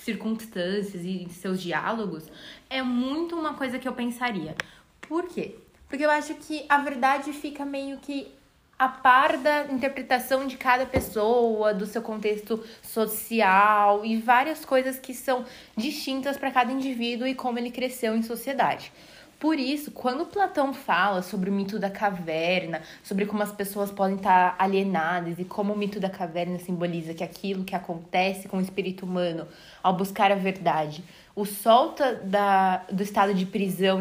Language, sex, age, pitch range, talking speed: Portuguese, female, 20-39, 185-250 Hz, 160 wpm